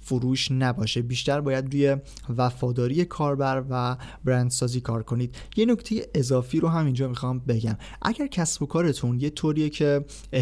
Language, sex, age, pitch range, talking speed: Persian, male, 30-49, 120-140 Hz, 155 wpm